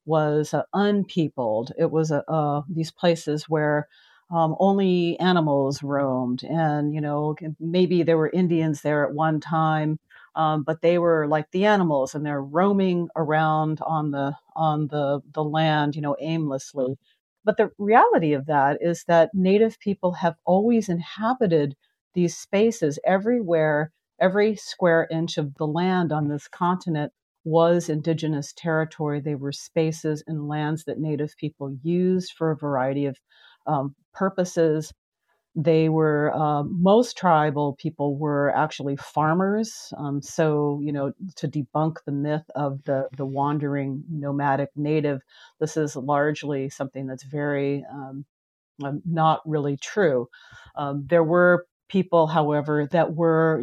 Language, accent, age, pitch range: English, American, 40-59, 145-170 Hz